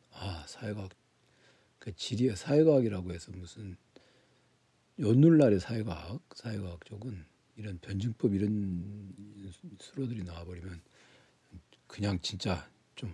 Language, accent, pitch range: Korean, native, 95-130 Hz